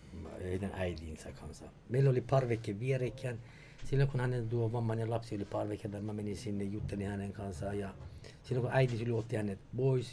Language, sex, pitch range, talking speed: Finnish, male, 105-140 Hz, 185 wpm